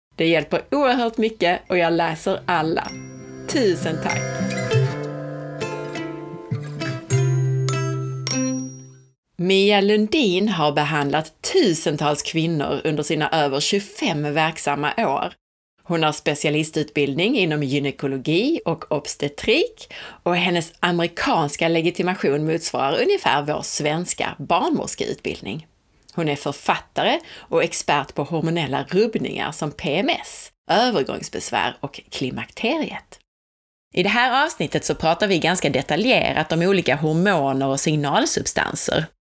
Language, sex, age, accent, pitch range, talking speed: Swedish, female, 30-49, native, 140-185 Hz, 100 wpm